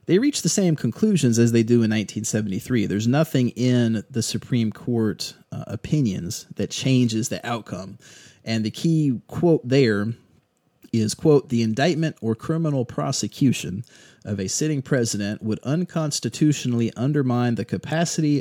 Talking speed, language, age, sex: 140 wpm, English, 30-49, male